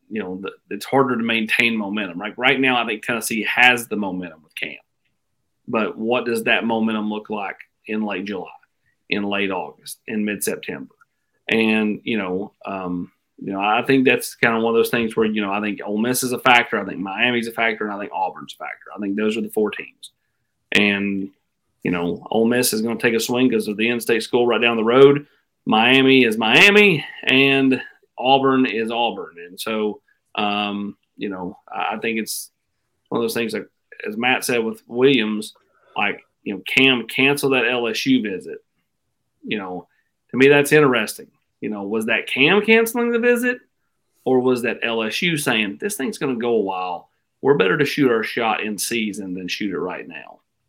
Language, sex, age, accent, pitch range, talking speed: English, male, 30-49, American, 105-130 Hz, 200 wpm